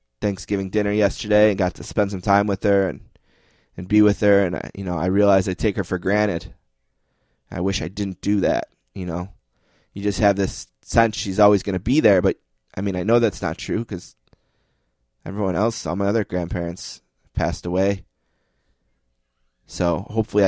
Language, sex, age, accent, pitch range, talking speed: English, male, 20-39, American, 90-100 Hz, 190 wpm